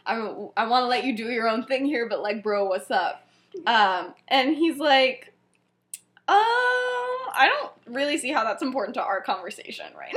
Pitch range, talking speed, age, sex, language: 215-300 Hz, 195 wpm, 10-29, female, English